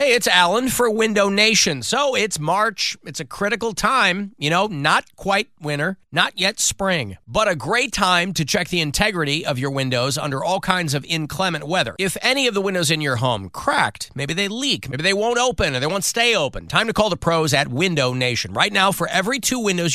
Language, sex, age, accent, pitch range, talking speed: English, male, 40-59, American, 140-200 Hz, 220 wpm